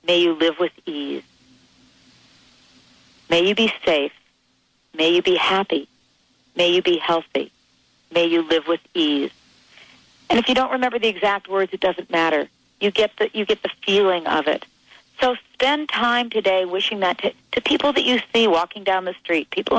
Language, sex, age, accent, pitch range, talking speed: English, female, 40-59, American, 170-235 Hz, 180 wpm